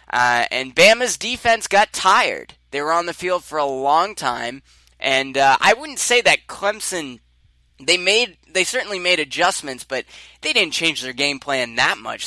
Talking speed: 175 wpm